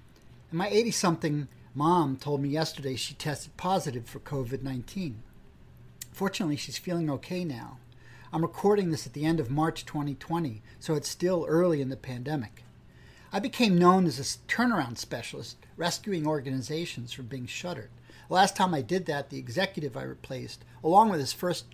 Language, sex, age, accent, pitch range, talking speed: English, male, 50-69, American, 130-175 Hz, 160 wpm